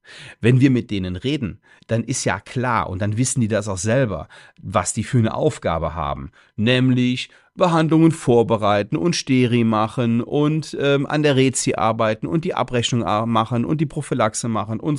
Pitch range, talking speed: 110-155 Hz, 170 wpm